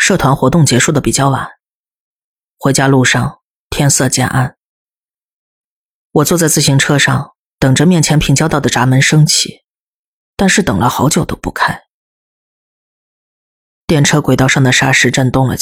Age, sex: 30-49, female